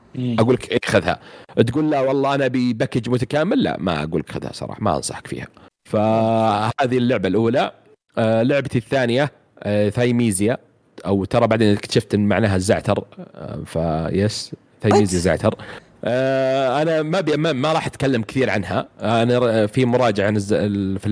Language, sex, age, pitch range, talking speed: Arabic, male, 30-49, 100-130 Hz, 135 wpm